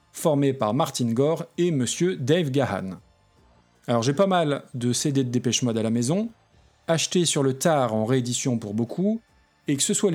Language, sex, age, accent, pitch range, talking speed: French, male, 40-59, French, 120-170 Hz, 190 wpm